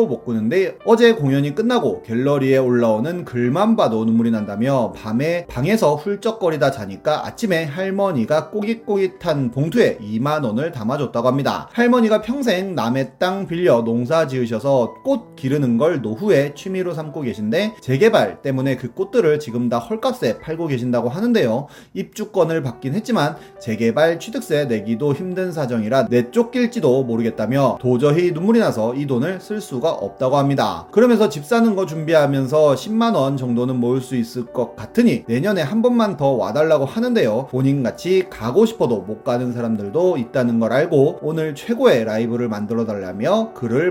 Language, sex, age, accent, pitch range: Korean, male, 30-49, native, 120-195 Hz